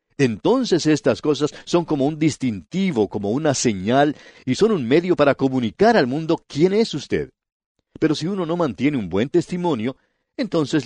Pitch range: 105-155 Hz